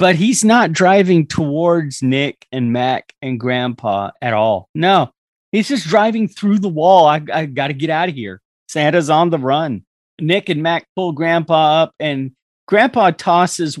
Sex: male